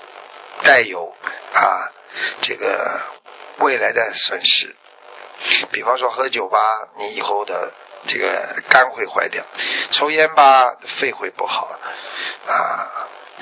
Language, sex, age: Chinese, male, 50-69